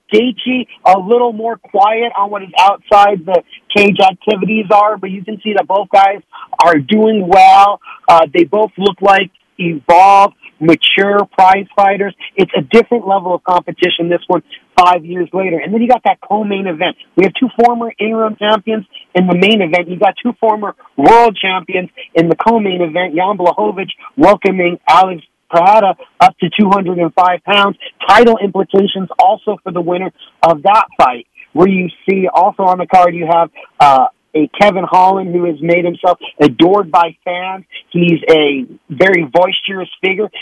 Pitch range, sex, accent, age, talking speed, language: 175-210 Hz, male, American, 40-59, 170 wpm, English